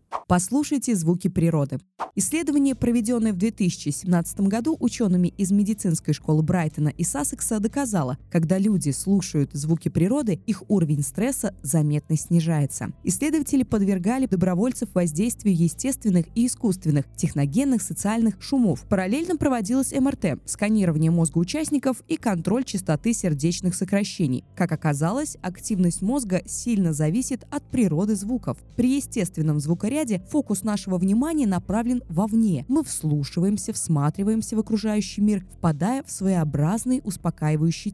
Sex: female